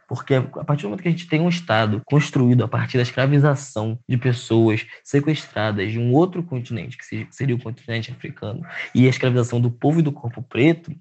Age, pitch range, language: 10-29, 125-150 Hz, Portuguese